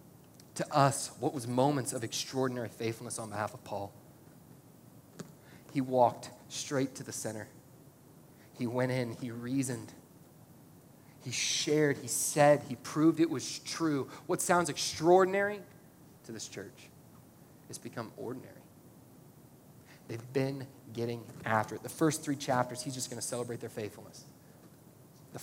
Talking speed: 135 wpm